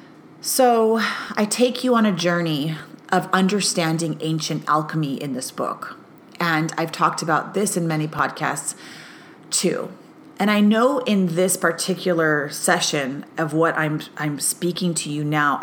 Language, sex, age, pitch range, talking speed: English, female, 30-49, 155-185 Hz, 145 wpm